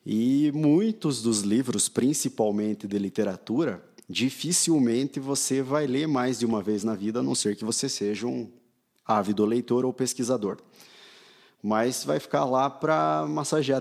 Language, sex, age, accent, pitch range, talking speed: Portuguese, male, 20-39, Brazilian, 105-125 Hz, 150 wpm